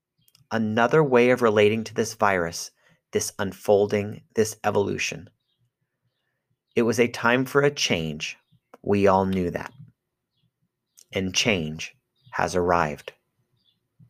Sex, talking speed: male, 110 wpm